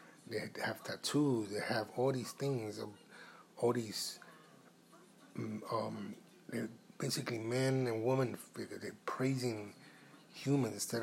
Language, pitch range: English, 115-135 Hz